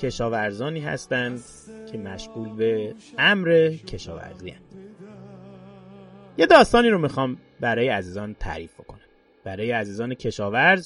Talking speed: 105 wpm